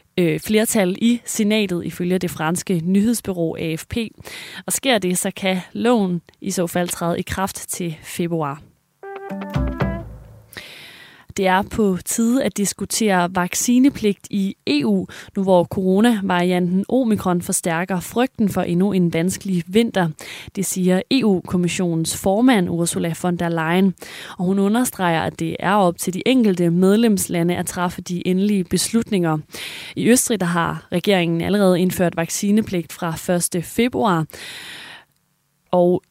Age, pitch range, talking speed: 30-49, 175-205 Hz, 130 wpm